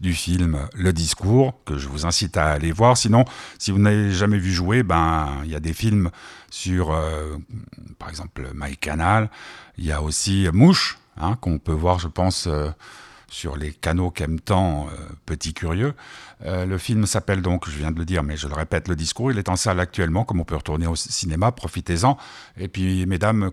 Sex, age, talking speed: male, 50-69, 205 wpm